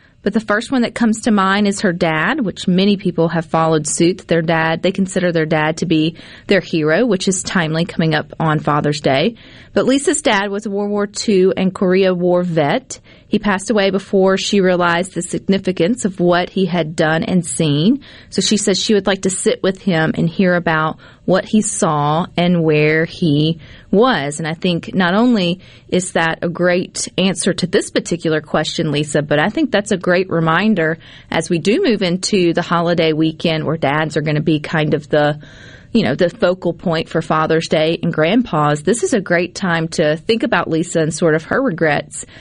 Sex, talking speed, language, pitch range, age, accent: female, 205 wpm, English, 160-200 Hz, 30-49, American